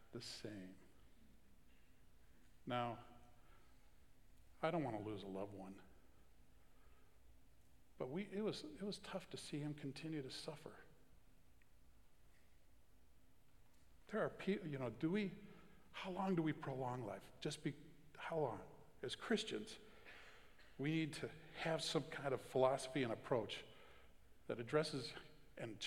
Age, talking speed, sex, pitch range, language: 50-69, 130 wpm, male, 115-165 Hz, English